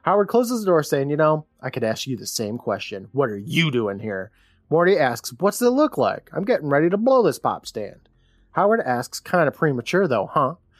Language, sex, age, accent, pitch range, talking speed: English, male, 30-49, American, 120-180 Hz, 220 wpm